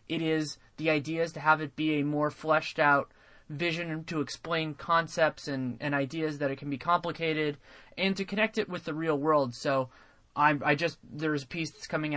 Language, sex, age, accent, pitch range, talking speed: English, male, 20-39, American, 135-160 Hz, 205 wpm